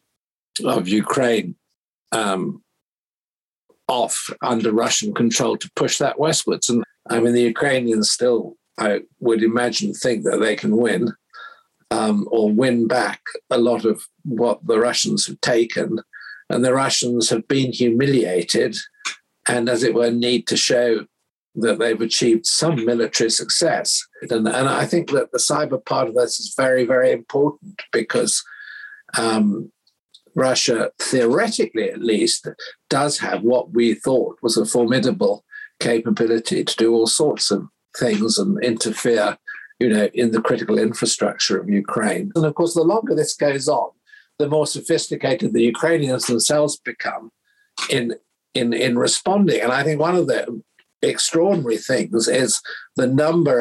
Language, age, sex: English, 50-69, male